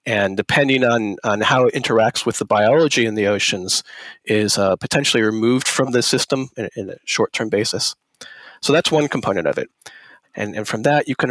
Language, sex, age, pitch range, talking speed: English, male, 40-59, 105-130 Hz, 195 wpm